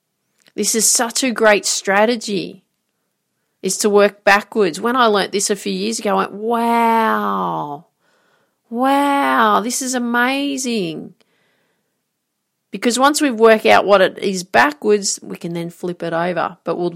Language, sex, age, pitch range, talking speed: English, female, 30-49, 170-215 Hz, 150 wpm